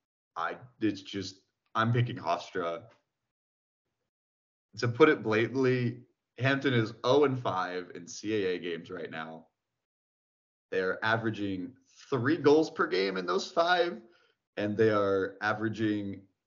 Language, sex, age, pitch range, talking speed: English, male, 30-49, 95-125 Hz, 115 wpm